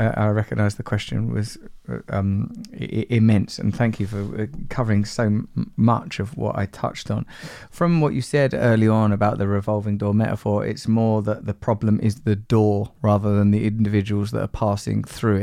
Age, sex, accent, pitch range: 20-39, male, British, 105-115 Hz